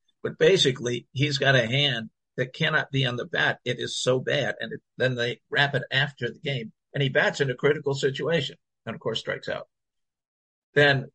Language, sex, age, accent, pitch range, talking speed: English, male, 50-69, American, 130-175 Hz, 205 wpm